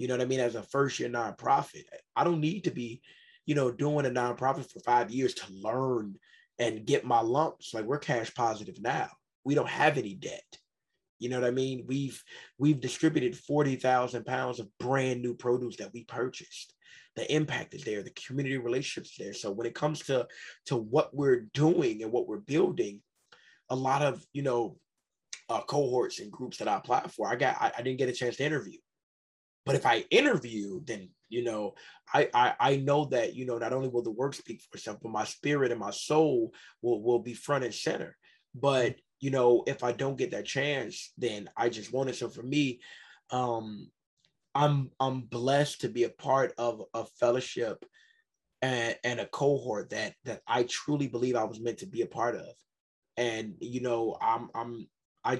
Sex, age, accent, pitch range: male, 20-39, American, 120-145 Hz